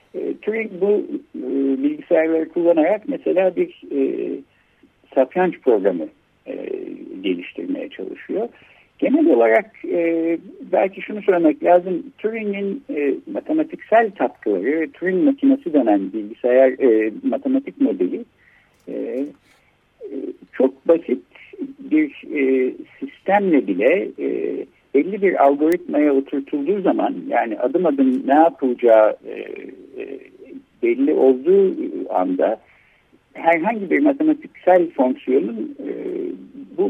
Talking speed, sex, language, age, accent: 95 wpm, male, Turkish, 60-79, native